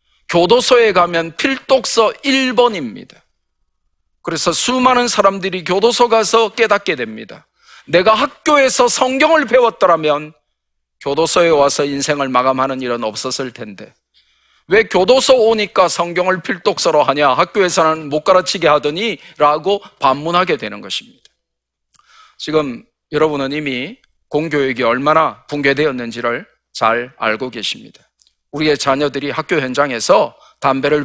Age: 40-59